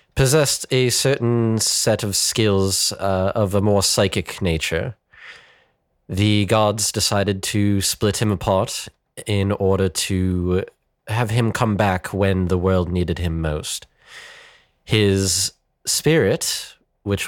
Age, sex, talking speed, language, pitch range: 30-49, male, 120 wpm, English, 90-110 Hz